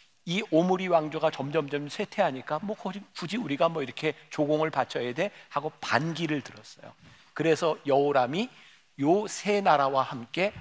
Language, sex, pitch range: Korean, male, 135-185 Hz